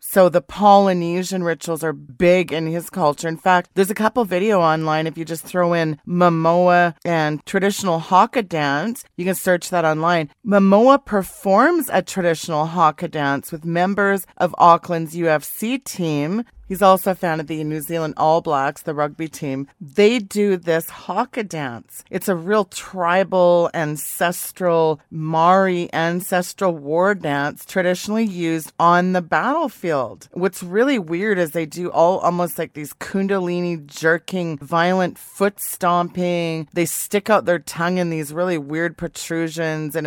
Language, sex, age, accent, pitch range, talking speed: English, female, 30-49, American, 160-190 Hz, 150 wpm